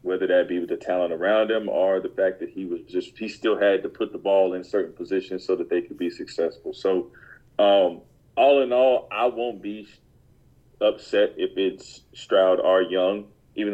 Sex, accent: male, American